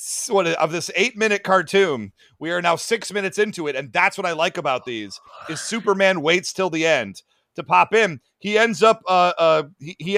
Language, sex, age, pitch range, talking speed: English, male, 40-59, 180-225 Hz, 205 wpm